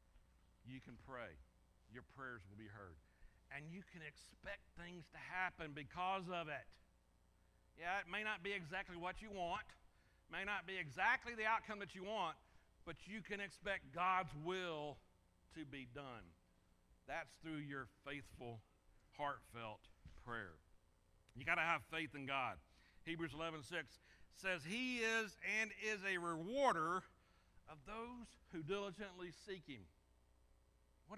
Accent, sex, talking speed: American, male, 145 wpm